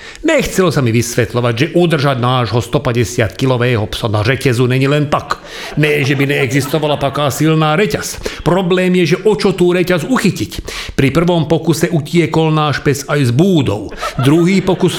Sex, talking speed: male, 155 wpm